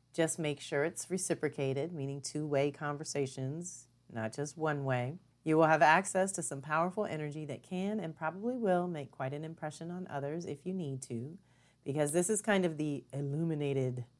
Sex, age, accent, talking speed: female, 40-59, American, 180 wpm